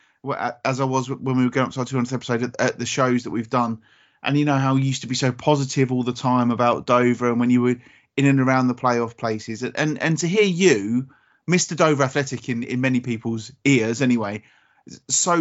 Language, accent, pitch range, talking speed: English, British, 125-155 Hz, 230 wpm